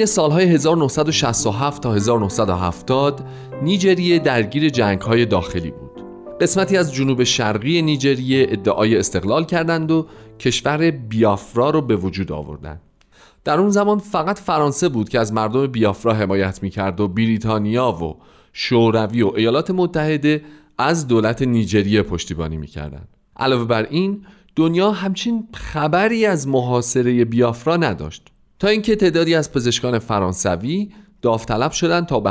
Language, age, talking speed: Persian, 40-59, 130 wpm